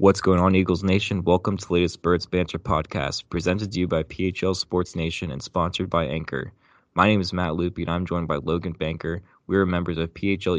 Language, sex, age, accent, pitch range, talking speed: English, male, 20-39, American, 80-95 Hz, 220 wpm